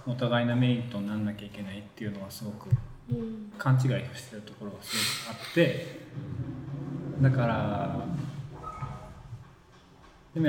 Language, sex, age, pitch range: Japanese, male, 20-39, 115-140 Hz